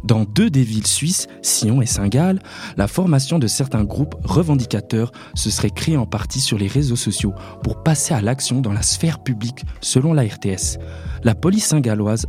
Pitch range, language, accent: 110-140 Hz, French, French